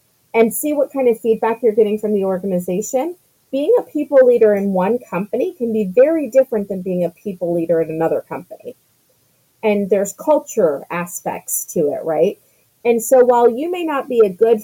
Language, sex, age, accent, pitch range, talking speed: English, female, 30-49, American, 195-255 Hz, 190 wpm